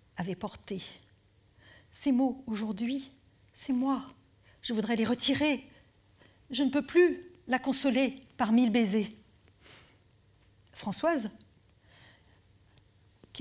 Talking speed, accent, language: 100 wpm, French, French